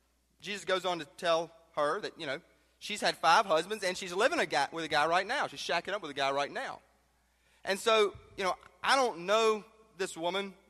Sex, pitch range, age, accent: male, 130-200 Hz, 30-49, American